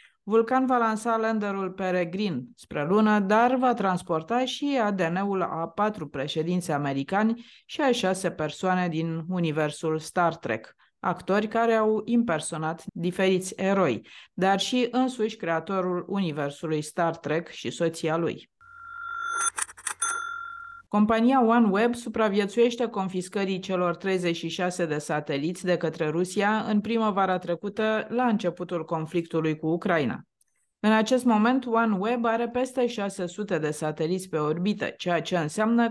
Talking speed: 120 wpm